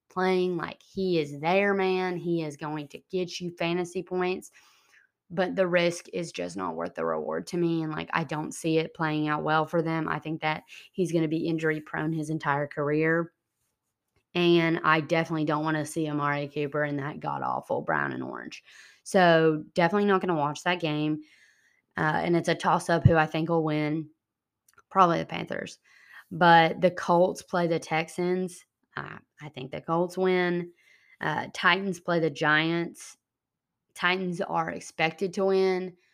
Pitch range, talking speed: 150-180 Hz, 175 wpm